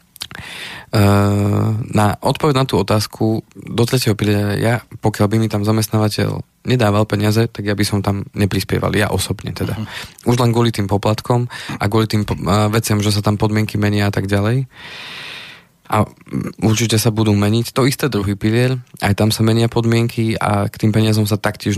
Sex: male